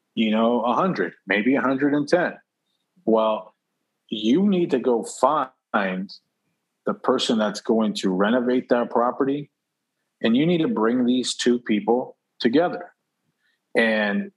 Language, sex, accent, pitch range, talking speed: English, male, American, 105-135 Hz, 120 wpm